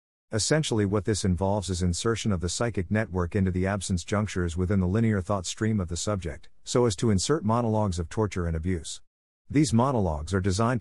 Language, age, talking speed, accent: English, 50-69, 195 wpm, American